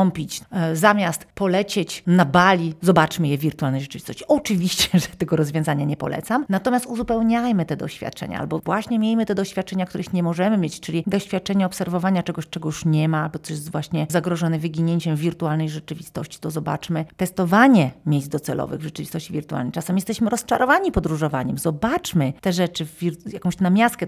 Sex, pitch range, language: female, 155-190 Hz, Polish